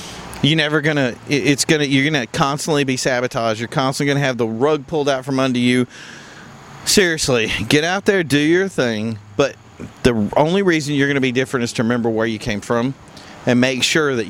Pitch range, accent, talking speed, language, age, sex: 120-145 Hz, American, 195 wpm, English, 40-59, male